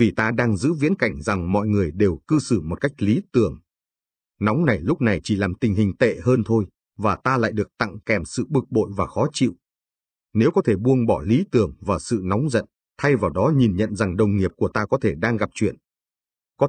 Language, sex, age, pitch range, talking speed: Vietnamese, male, 30-49, 100-125 Hz, 235 wpm